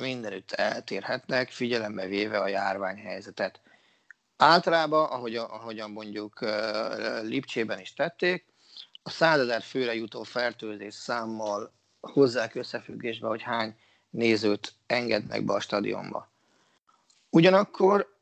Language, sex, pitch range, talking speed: Hungarian, male, 110-145 Hz, 100 wpm